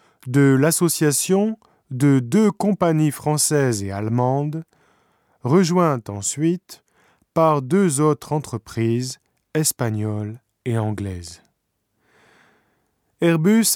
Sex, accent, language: male, French, Japanese